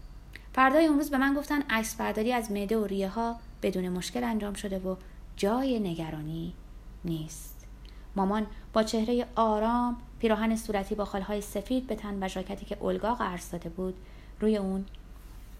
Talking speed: 150 wpm